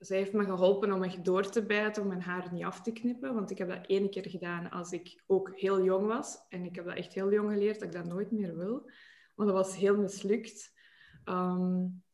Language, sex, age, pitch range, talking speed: Dutch, female, 20-39, 190-215 Hz, 240 wpm